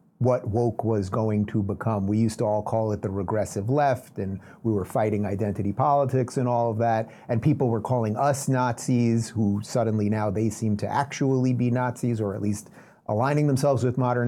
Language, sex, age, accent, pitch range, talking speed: English, male, 30-49, American, 115-140 Hz, 200 wpm